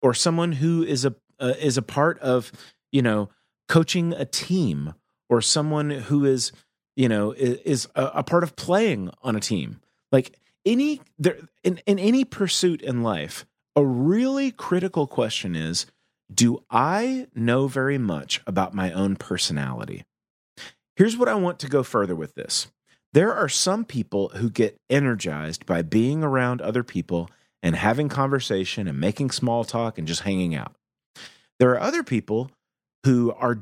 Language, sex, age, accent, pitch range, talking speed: English, male, 30-49, American, 100-150 Hz, 165 wpm